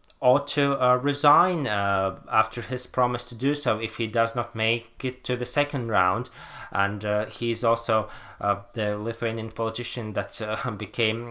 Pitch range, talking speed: 105-125 Hz, 170 wpm